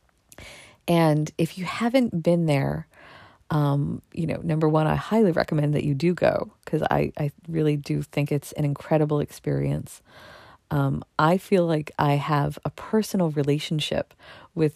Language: English